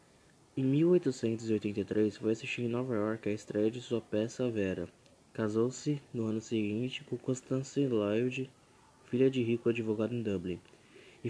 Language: Portuguese